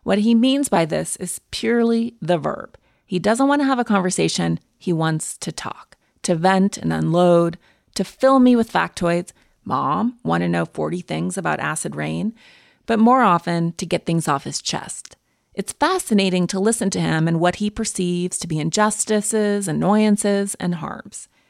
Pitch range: 170-220 Hz